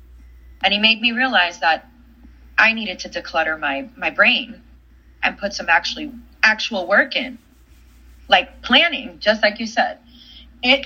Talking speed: 150 wpm